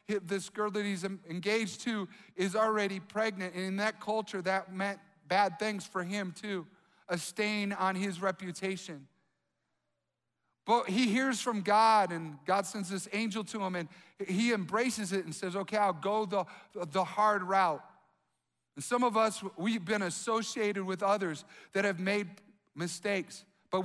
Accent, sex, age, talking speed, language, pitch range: American, male, 50-69, 160 wpm, English, 190-220 Hz